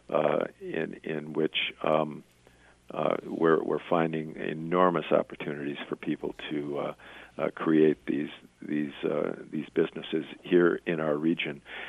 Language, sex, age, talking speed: English, male, 50-69, 130 wpm